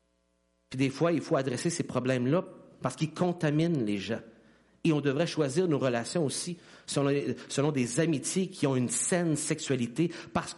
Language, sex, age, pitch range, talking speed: French, male, 50-69, 150-240 Hz, 170 wpm